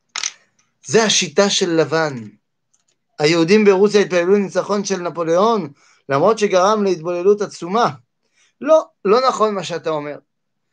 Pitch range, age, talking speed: 155-225 Hz, 30-49, 110 wpm